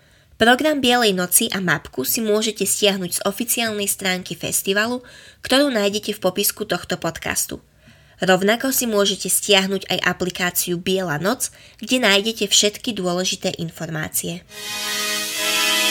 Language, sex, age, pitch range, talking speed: Slovak, female, 20-39, 175-220 Hz, 115 wpm